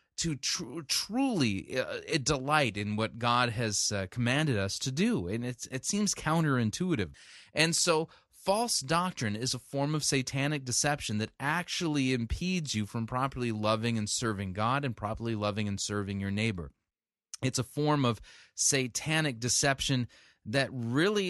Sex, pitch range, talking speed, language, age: male, 110-155 Hz, 150 wpm, English, 30-49